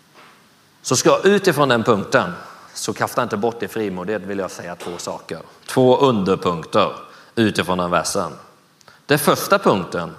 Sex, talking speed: male, 140 wpm